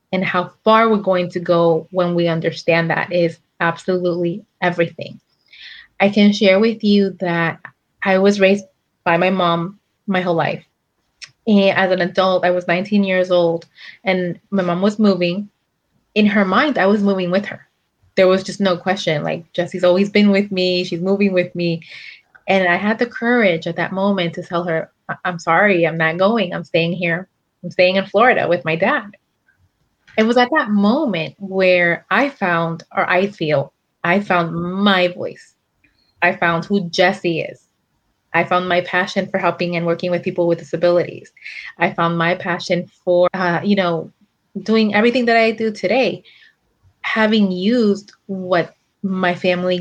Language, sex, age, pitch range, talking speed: English, female, 20-39, 170-195 Hz, 170 wpm